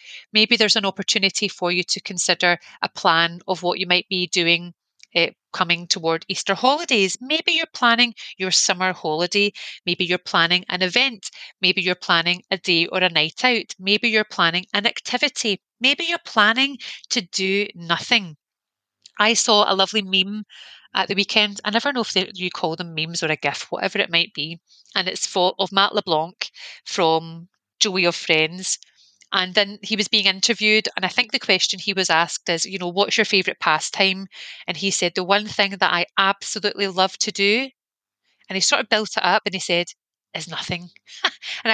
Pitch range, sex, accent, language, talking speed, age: 175-215 Hz, female, British, English, 185 wpm, 30-49